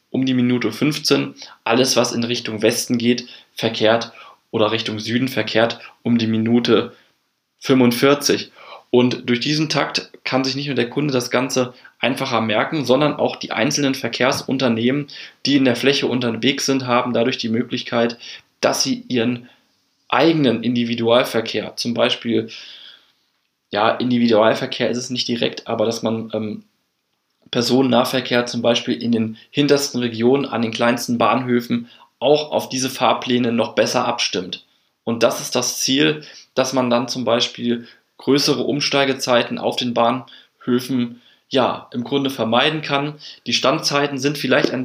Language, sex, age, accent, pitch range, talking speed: German, male, 20-39, German, 115-130 Hz, 145 wpm